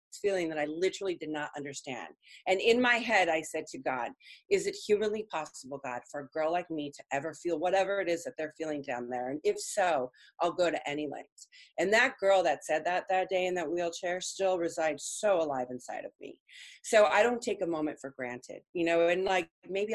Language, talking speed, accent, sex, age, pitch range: English, 225 wpm, American, female, 30-49, 155-195 Hz